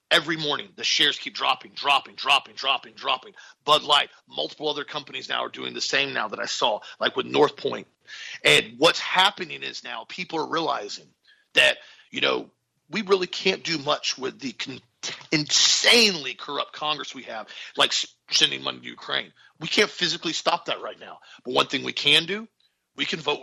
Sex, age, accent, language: male, 40-59, American, English